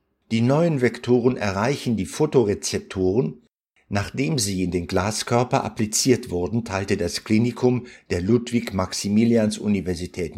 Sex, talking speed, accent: male, 105 wpm, German